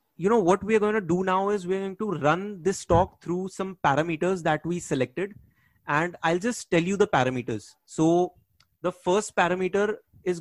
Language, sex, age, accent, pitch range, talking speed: English, male, 30-49, Indian, 140-180 Hz, 190 wpm